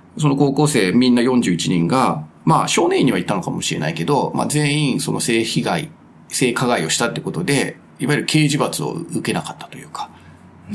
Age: 40-59